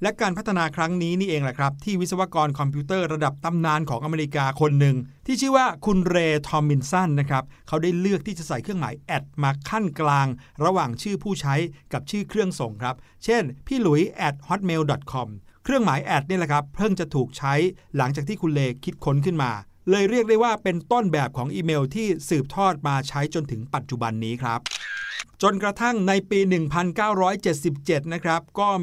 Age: 60-79